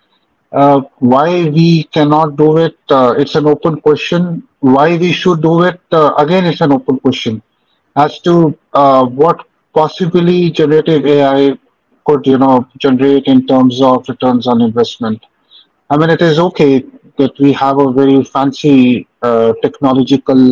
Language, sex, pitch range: English, male, 135-155 Hz